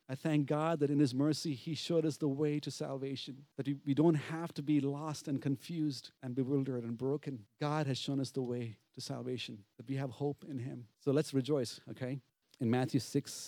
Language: English